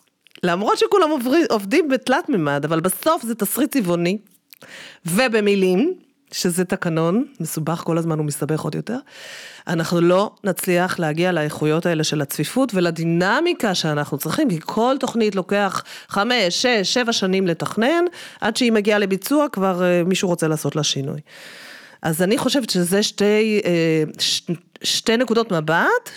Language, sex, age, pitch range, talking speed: Hebrew, female, 30-49, 160-220 Hz, 140 wpm